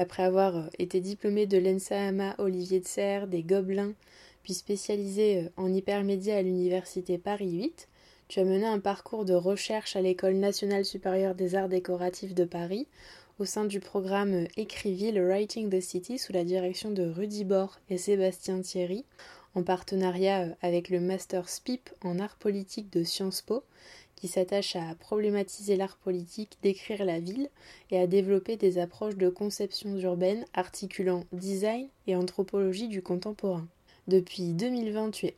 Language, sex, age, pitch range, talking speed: French, female, 20-39, 180-205 Hz, 155 wpm